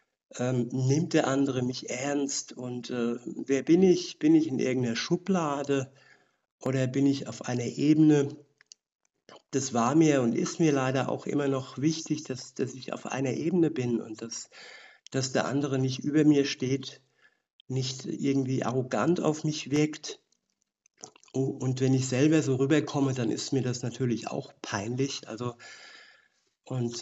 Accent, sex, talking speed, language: German, male, 155 wpm, German